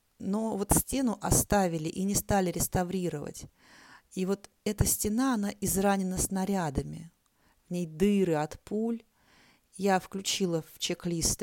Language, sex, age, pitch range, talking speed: Russian, female, 30-49, 165-210 Hz, 125 wpm